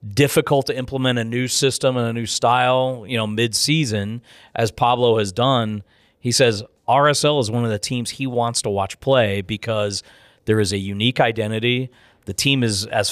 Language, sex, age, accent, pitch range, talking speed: English, male, 40-59, American, 110-130 Hz, 185 wpm